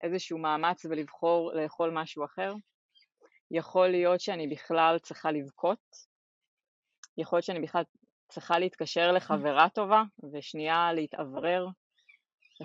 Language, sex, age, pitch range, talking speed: Hebrew, female, 20-39, 155-190 Hz, 110 wpm